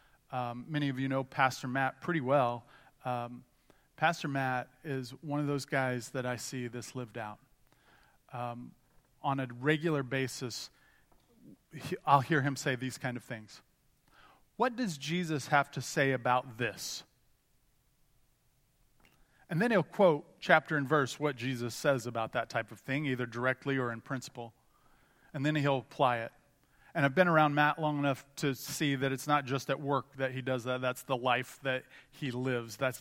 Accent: American